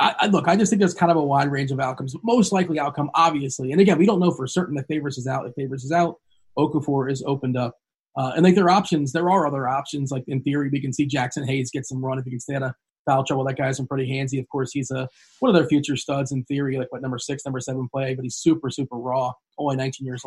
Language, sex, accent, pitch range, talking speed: English, male, American, 130-155 Hz, 280 wpm